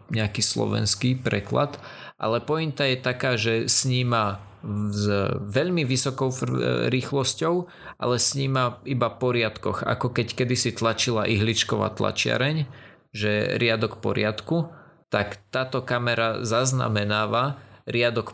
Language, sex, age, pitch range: Slovak, male, 20-39, 110-130 Hz